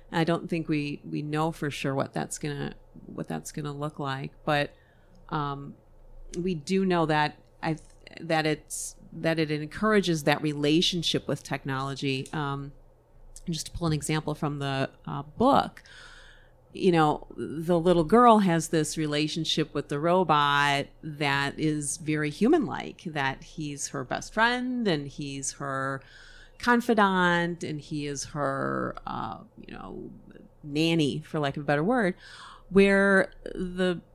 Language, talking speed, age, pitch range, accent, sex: English, 145 wpm, 40-59, 145-175 Hz, American, female